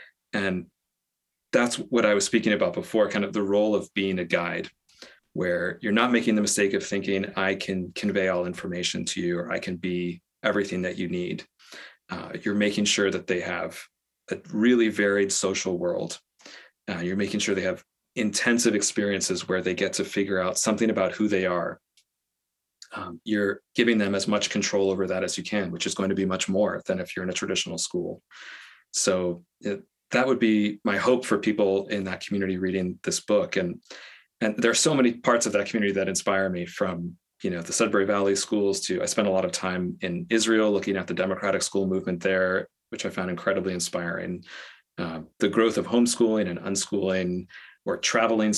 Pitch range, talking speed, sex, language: 95-105 Hz, 200 wpm, male, English